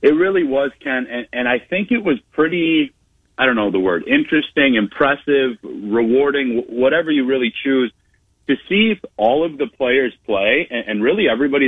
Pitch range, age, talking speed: 115-145 Hz, 30-49, 180 wpm